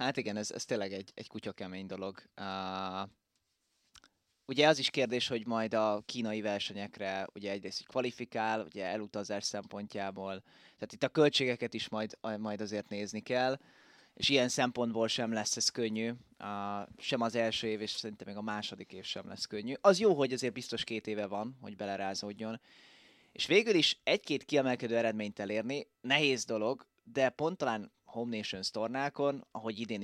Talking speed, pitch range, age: 165 wpm, 105-125 Hz, 20-39